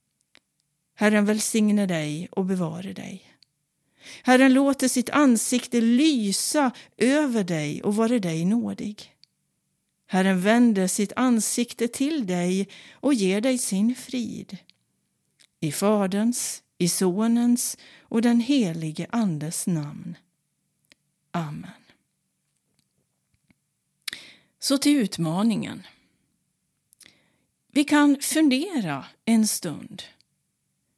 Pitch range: 175-240 Hz